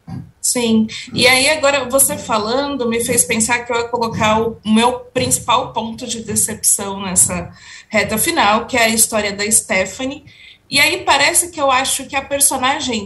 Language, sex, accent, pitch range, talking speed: Portuguese, female, Brazilian, 210-260 Hz, 170 wpm